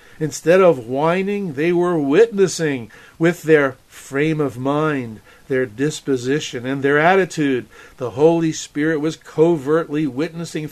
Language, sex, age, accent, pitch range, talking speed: English, male, 50-69, American, 145-175 Hz, 125 wpm